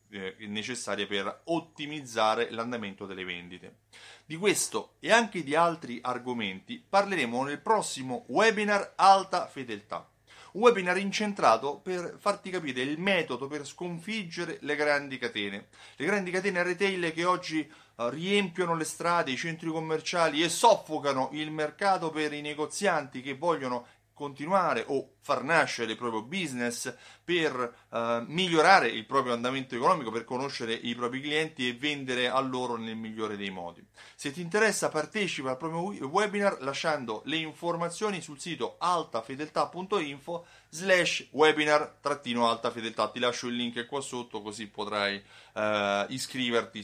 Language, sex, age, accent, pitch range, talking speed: Italian, male, 30-49, native, 120-170 Hz, 135 wpm